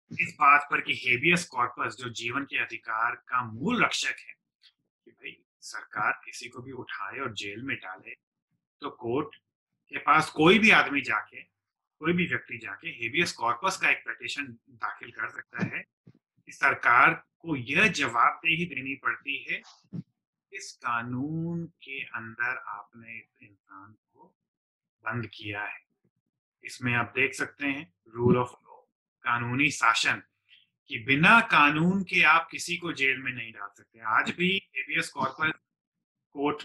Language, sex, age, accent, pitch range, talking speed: Hindi, male, 30-49, native, 120-165 Hz, 150 wpm